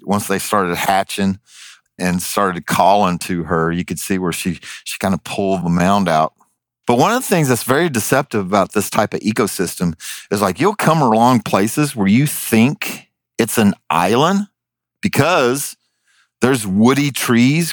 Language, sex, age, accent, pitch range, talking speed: English, male, 50-69, American, 105-140 Hz, 170 wpm